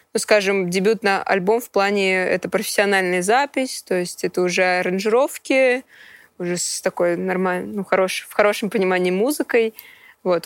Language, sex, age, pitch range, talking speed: Russian, female, 20-39, 185-220 Hz, 150 wpm